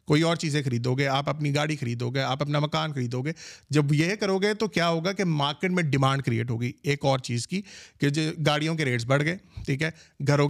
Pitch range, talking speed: 140-180 Hz, 240 wpm